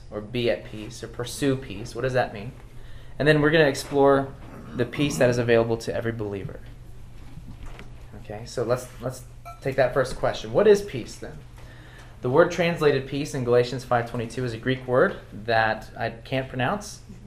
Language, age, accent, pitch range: English, 20-39, American, 115-135 Hz